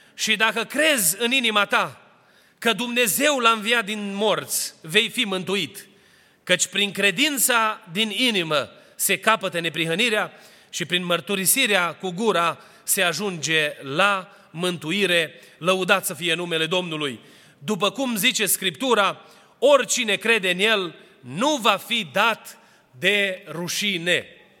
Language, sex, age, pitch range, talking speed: Romanian, male, 30-49, 185-235 Hz, 125 wpm